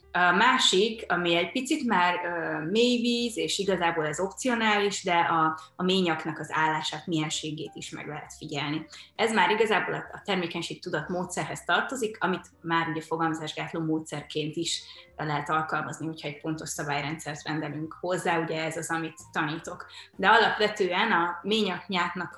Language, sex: Hungarian, female